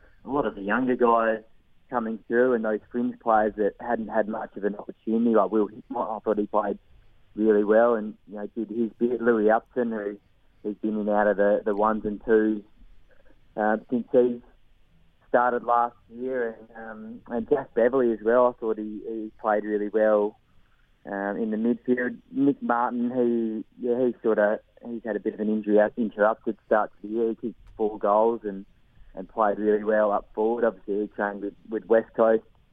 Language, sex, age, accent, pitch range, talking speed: English, male, 20-39, Australian, 105-115 Hz, 195 wpm